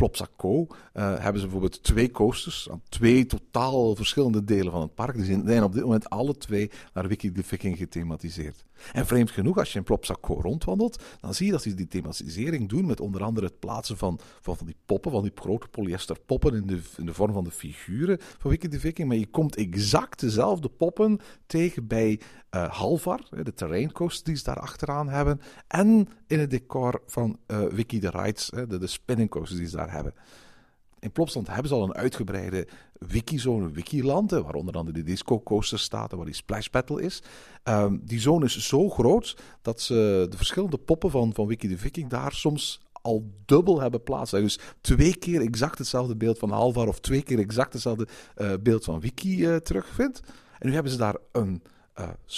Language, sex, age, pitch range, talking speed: Dutch, male, 50-69, 100-140 Hz, 195 wpm